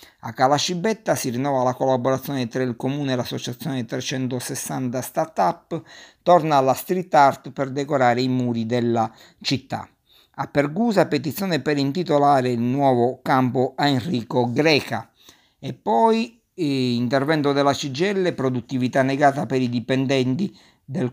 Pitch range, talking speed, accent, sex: 130-150 Hz, 130 wpm, native, male